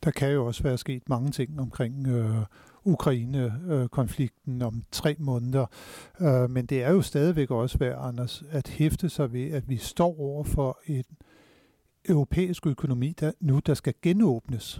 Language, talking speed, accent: Danish, 160 wpm, native